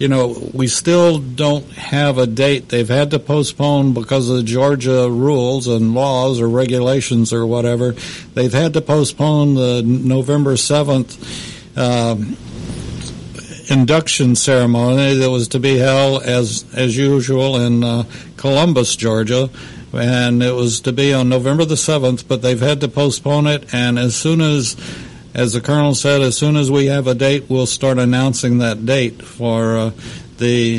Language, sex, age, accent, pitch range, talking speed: English, male, 60-79, American, 115-135 Hz, 160 wpm